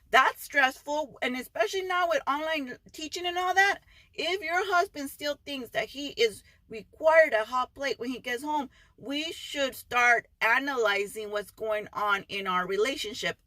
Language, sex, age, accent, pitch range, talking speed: English, female, 40-59, American, 210-275 Hz, 165 wpm